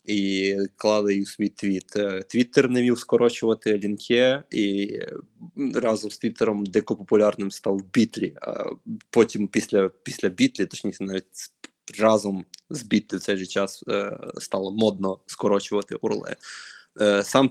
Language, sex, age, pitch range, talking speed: Ukrainian, male, 20-39, 100-120 Hz, 125 wpm